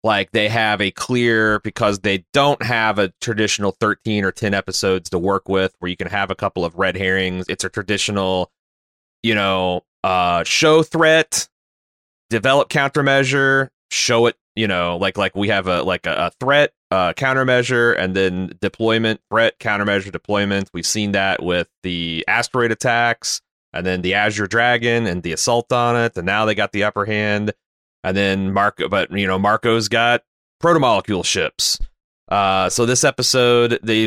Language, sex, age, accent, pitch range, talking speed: English, male, 30-49, American, 95-125 Hz, 175 wpm